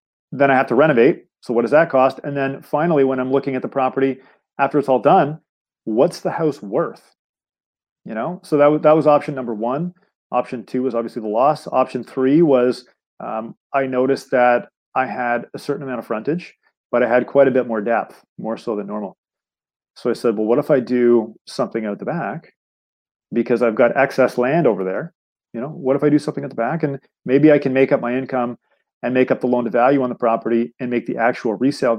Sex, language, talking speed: male, English, 225 wpm